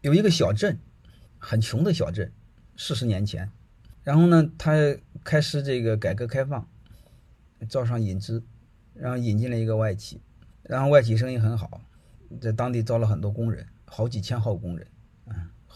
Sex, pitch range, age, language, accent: male, 105-135 Hz, 30-49, Chinese, native